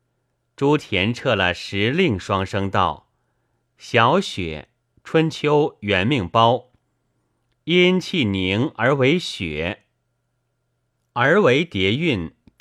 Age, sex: 30-49, male